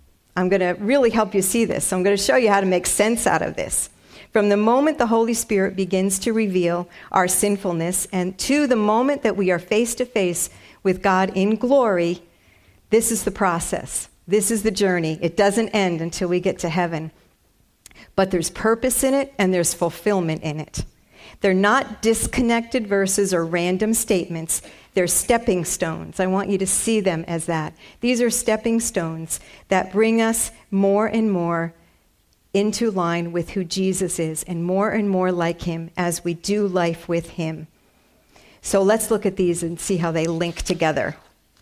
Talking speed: 185 wpm